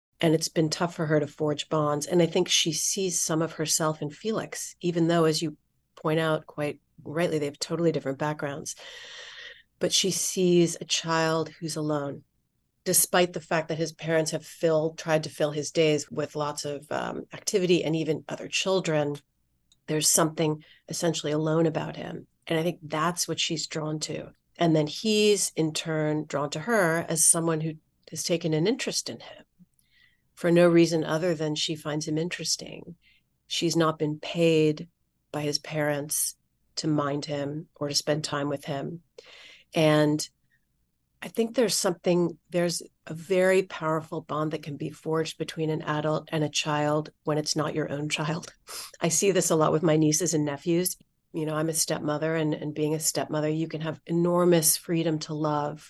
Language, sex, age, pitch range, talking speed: English, female, 40-59, 150-170 Hz, 180 wpm